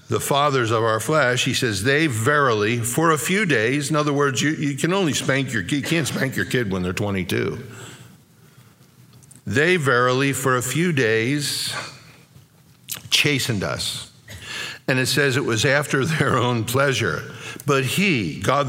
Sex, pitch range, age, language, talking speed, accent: male, 120-145 Hz, 50-69, English, 160 wpm, American